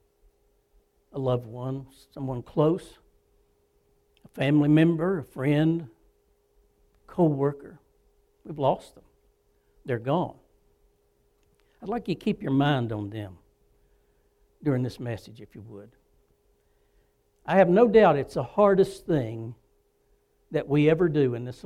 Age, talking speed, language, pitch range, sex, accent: 60-79, 125 wpm, English, 130-190 Hz, male, American